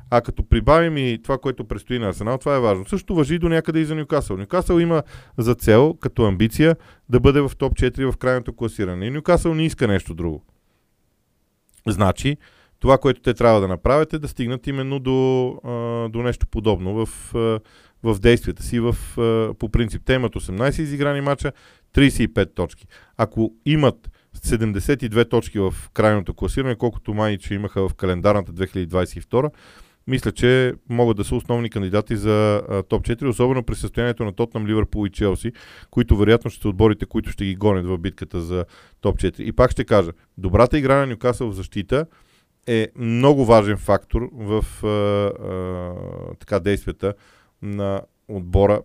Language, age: Bulgarian, 40-59